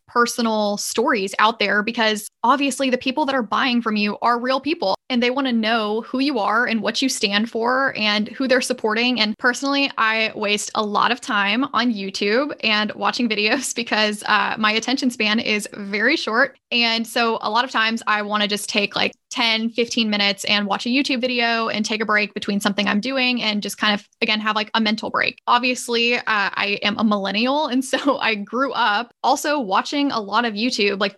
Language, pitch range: English, 210-255 Hz